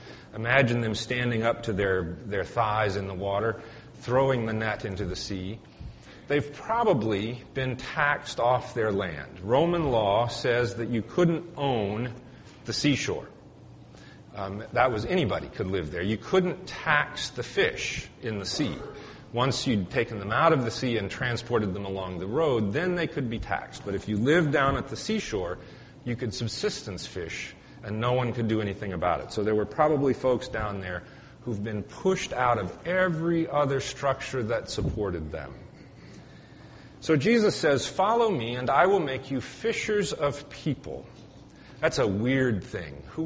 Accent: American